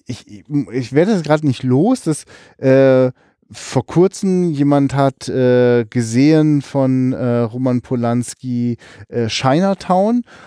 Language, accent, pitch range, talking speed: German, German, 125-160 Hz, 120 wpm